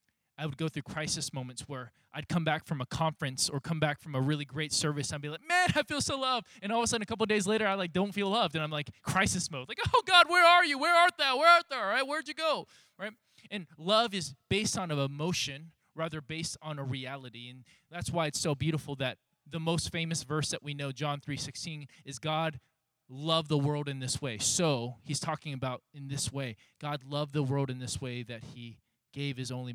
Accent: American